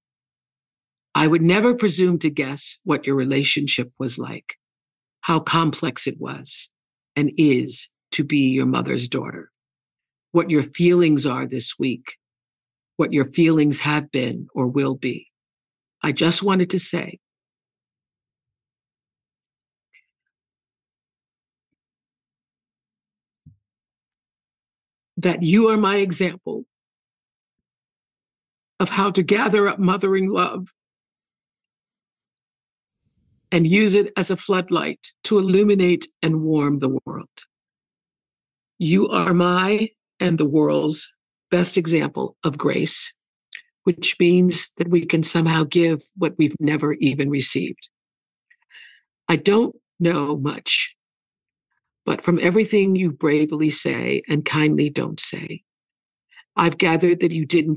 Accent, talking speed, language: American, 110 wpm, English